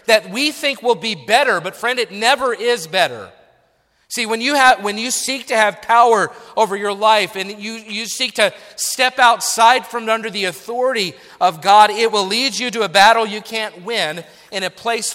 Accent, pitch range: American, 195-240 Hz